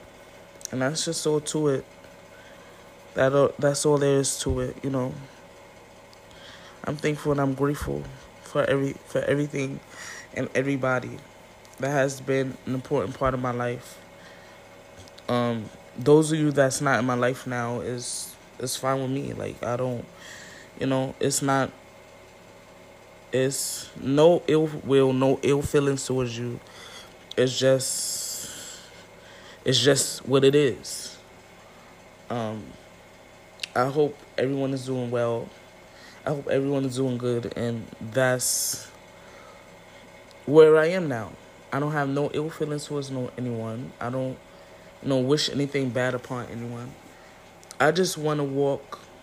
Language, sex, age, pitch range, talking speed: English, male, 20-39, 120-140 Hz, 140 wpm